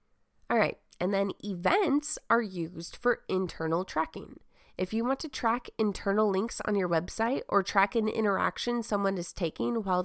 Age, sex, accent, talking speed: 20-39, female, American, 160 wpm